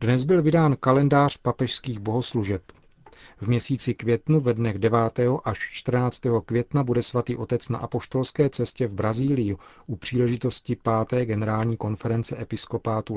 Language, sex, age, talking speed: Czech, male, 40-59, 130 wpm